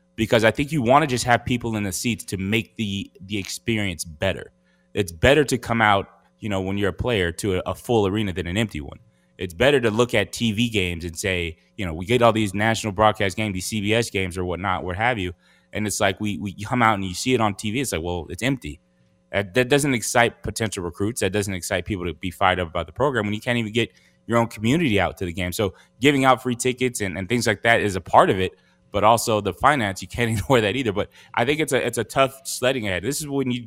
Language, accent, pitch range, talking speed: English, American, 95-120 Hz, 265 wpm